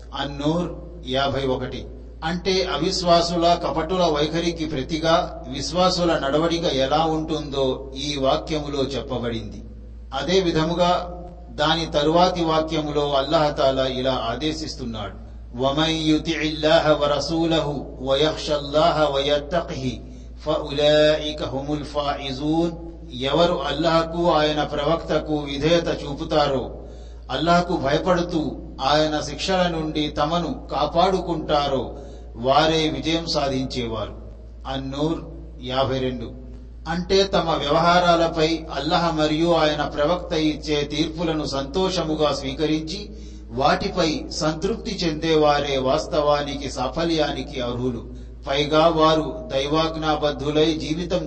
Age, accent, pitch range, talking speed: 50-69, native, 135-165 Hz, 65 wpm